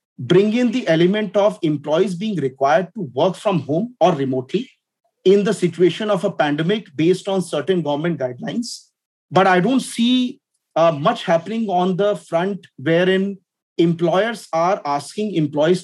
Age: 40-59